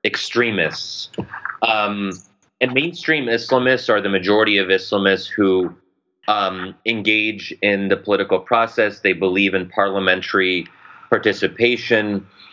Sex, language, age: male, English, 30-49